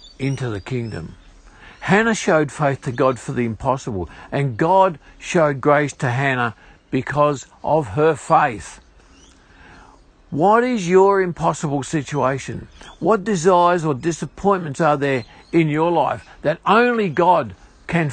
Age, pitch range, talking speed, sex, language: 50-69, 120-175 Hz, 130 wpm, male, English